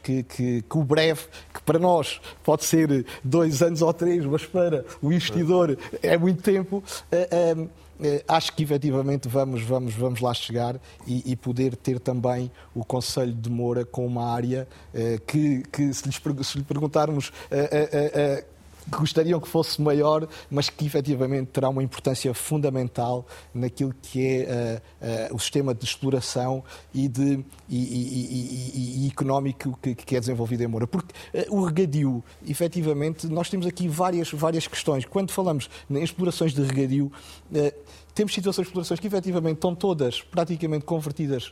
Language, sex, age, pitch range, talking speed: Portuguese, male, 50-69, 130-170 Hz, 150 wpm